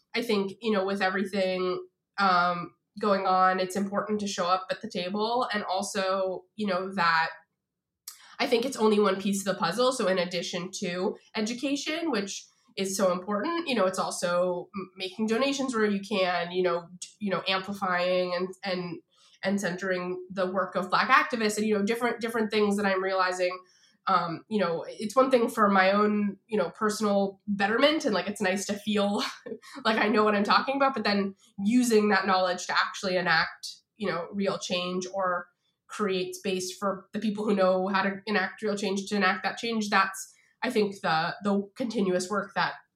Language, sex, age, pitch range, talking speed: English, female, 20-39, 185-210 Hz, 190 wpm